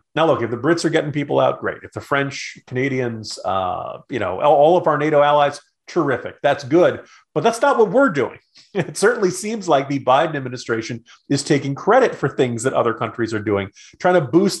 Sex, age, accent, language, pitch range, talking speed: male, 40-59, American, English, 110-145 Hz, 210 wpm